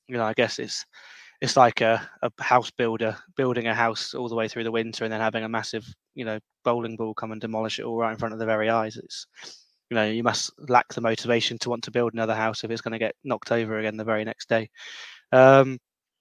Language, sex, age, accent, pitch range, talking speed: English, male, 20-39, British, 115-130 Hz, 250 wpm